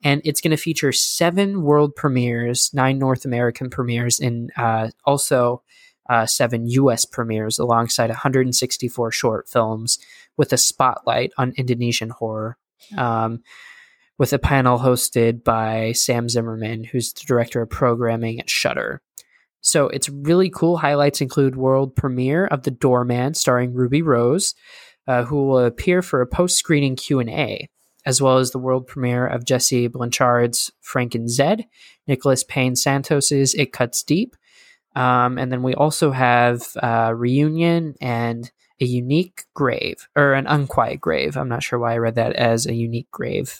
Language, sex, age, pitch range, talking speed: English, male, 20-39, 120-145 Hz, 155 wpm